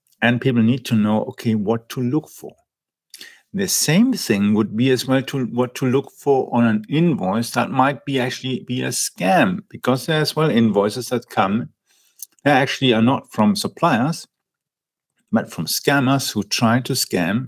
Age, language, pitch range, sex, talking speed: 50-69, English, 110-135 Hz, male, 175 wpm